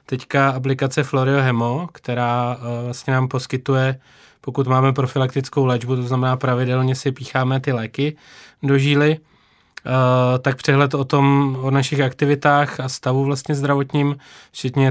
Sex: male